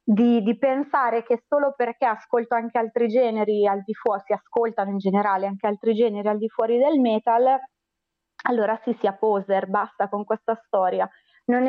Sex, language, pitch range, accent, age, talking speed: female, Italian, 215-260 Hz, native, 30-49, 175 wpm